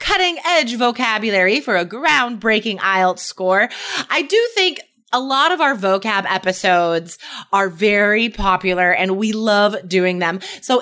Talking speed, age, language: 145 wpm, 30-49, English